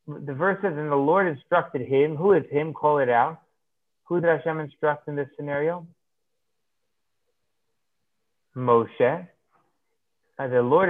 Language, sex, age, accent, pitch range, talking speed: English, male, 30-49, American, 150-200 Hz, 140 wpm